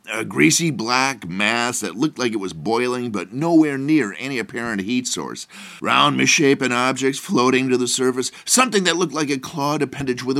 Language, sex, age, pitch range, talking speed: English, male, 40-59, 100-140 Hz, 185 wpm